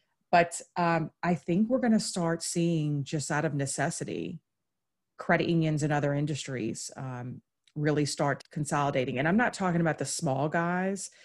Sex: female